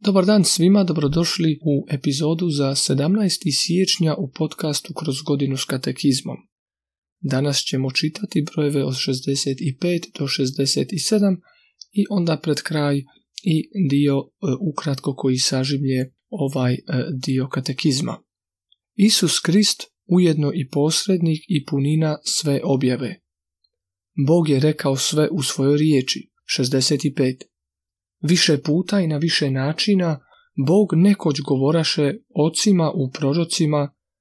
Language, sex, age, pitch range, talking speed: Croatian, male, 40-59, 135-165 Hz, 110 wpm